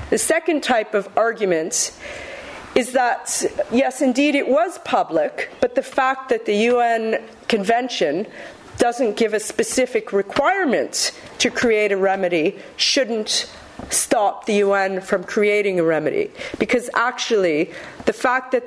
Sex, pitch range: female, 195-255 Hz